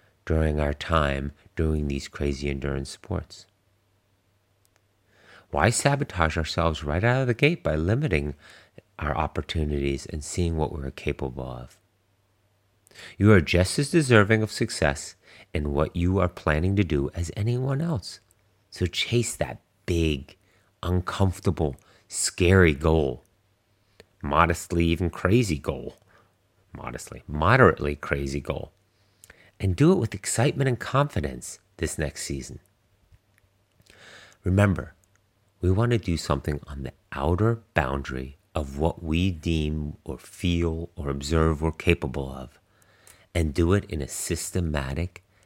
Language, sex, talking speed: English, male, 125 wpm